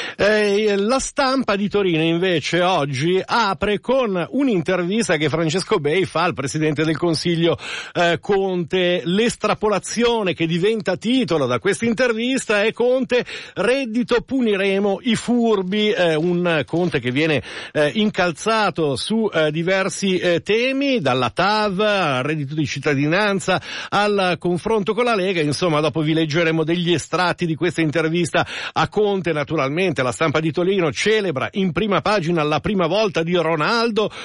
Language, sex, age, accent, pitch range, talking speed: Italian, male, 50-69, native, 165-210 Hz, 140 wpm